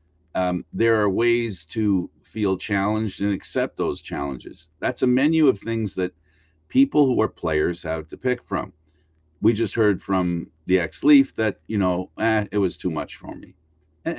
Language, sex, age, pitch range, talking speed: English, male, 50-69, 85-125 Hz, 180 wpm